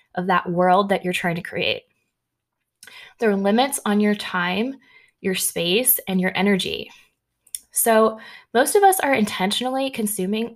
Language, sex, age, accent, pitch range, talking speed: English, female, 20-39, American, 185-235 Hz, 150 wpm